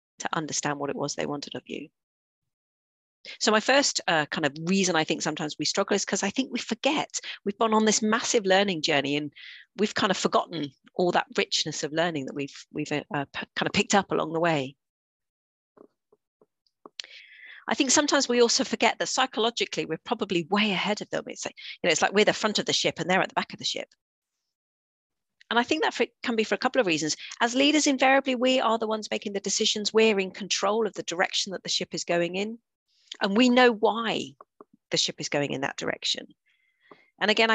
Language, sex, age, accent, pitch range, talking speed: English, female, 40-59, British, 160-225 Hz, 220 wpm